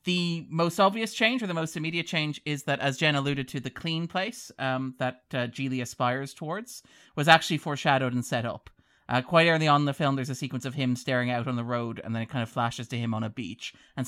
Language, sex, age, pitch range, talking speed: English, male, 30-49, 125-175 Hz, 250 wpm